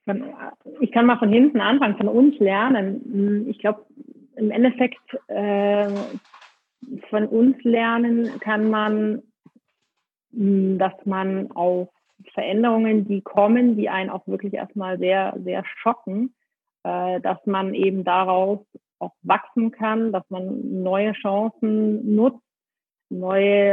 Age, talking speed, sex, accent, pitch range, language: 30-49, 115 wpm, female, German, 190-220 Hz, German